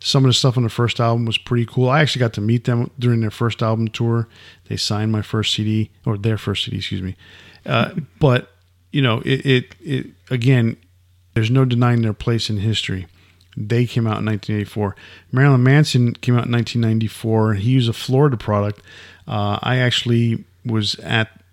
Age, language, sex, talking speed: 50-69, English, male, 190 wpm